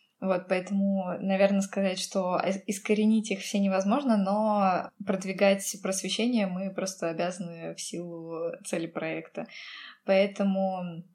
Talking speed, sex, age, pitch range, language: 110 wpm, female, 20-39, 180-205 Hz, Russian